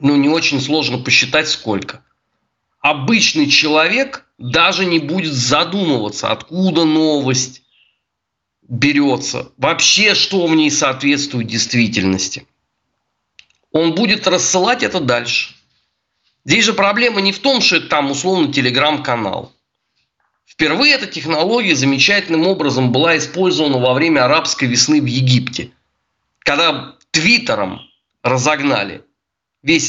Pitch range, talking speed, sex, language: 130-185 Hz, 110 wpm, male, Russian